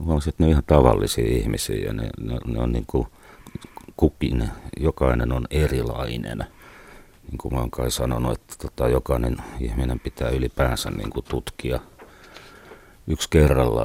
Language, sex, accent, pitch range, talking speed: Finnish, male, native, 65-80 Hz, 135 wpm